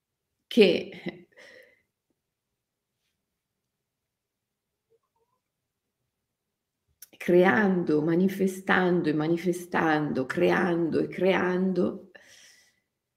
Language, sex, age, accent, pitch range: Italian, female, 40-59, native, 155-210 Hz